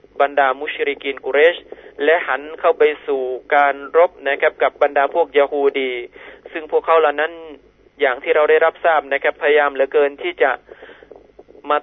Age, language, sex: 30-49, Thai, male